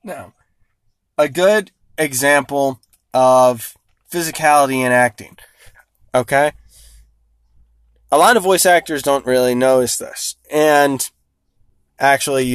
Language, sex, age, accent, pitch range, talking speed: English, male, 20-39, American, 105-170 Hz, 95 wpm